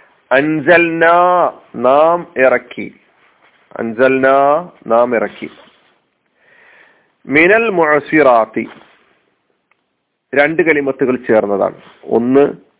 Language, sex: Malayalam, male